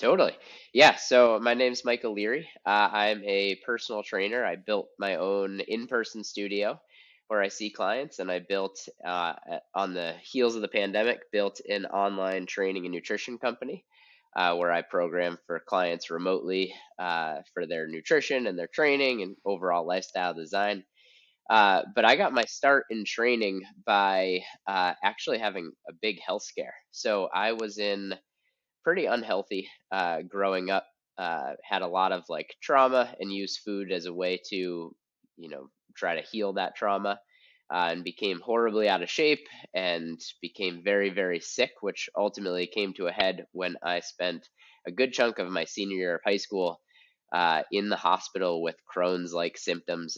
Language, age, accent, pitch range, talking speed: English, 20-39, American, 90-105 Hz, 170 wpm